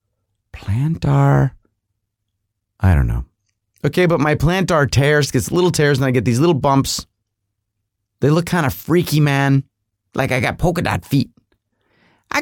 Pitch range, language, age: 100-145 Hz, English, 30-49